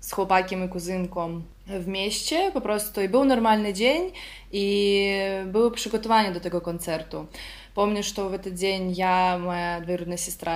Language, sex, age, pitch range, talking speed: Polish, female, 20-39, 175-205 Hz, 155 wpm